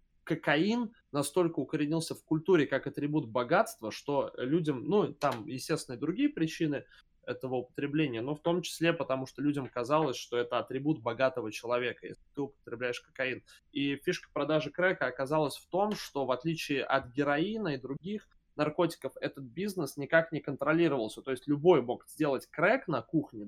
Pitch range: 130-165 Hz